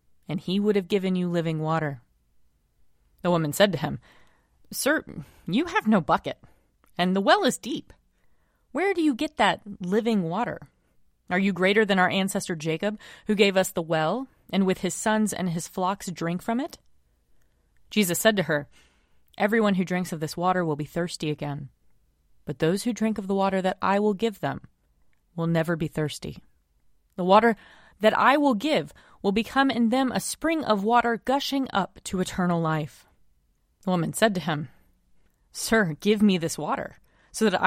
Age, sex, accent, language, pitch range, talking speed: 30-49, female, American, English, 150-220 Hz, 180 wpm